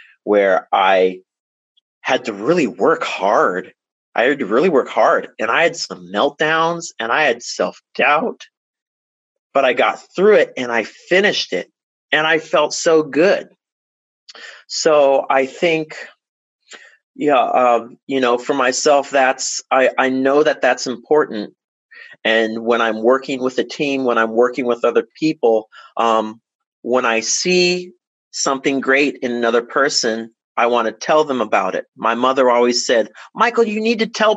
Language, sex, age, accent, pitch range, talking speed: English, male, 30-49, American, 115-155 Hz, 160 wpm